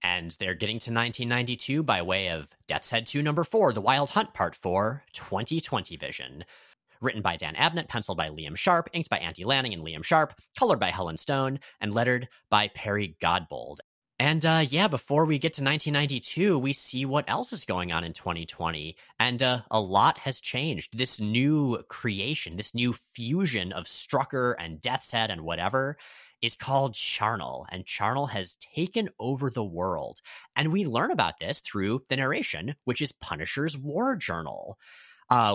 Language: English